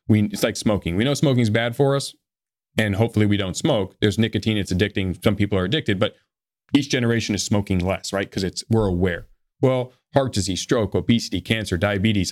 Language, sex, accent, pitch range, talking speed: English, male, American, 95-115 Hz, 205 wpm